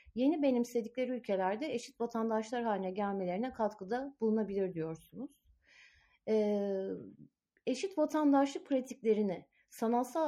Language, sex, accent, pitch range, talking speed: Turkish, female, native, 205-255 Hz, 90 wpm